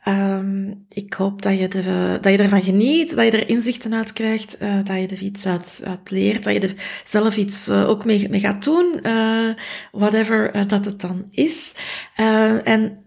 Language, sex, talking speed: Dutch, female, 190 wpm